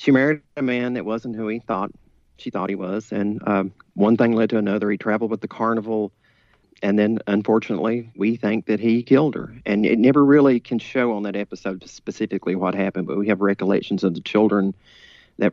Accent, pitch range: American, 95-110 Hz